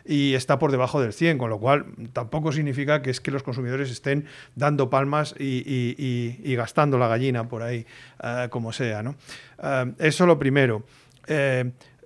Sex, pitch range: male, 130-160 Hz